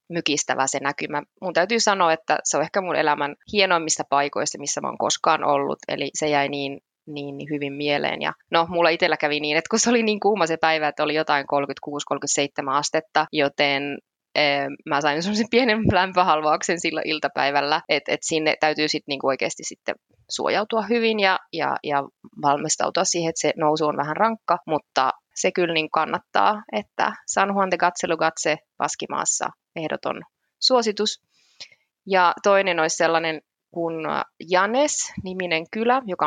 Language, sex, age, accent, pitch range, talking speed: Finnish, female, 20-39, native, 150-180 Hz, 160 wpm